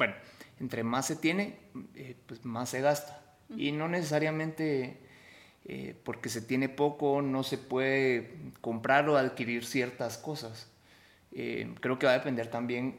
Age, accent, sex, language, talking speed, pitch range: 30-49, Mexican, male, Spanish, 155 wpm, 125-150 Hz